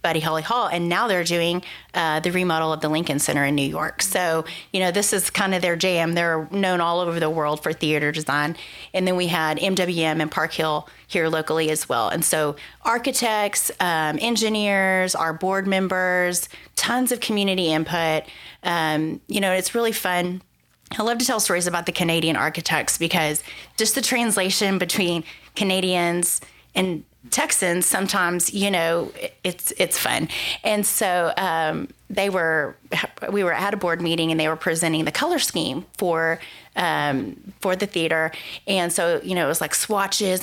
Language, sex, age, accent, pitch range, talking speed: English, female, 30-49, American, 160-200 Hz, 175 wpm